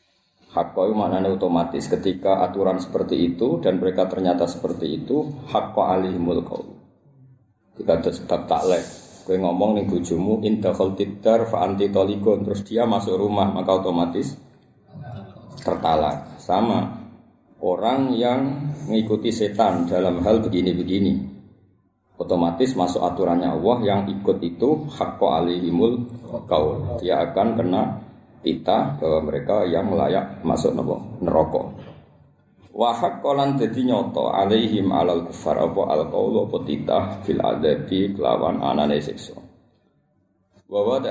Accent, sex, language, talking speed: native, male, Indonesian, 110 wpm